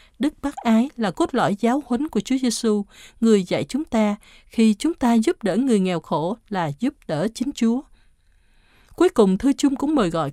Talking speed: 205 wpm